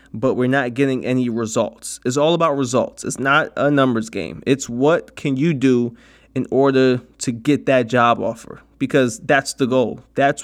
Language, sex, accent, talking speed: English, male, American, 185 wpm